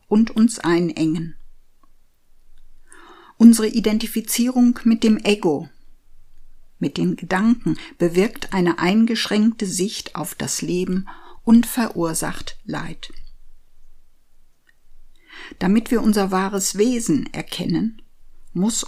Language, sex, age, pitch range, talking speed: German, female, 50-69, 175-220 Hz, 90 wpm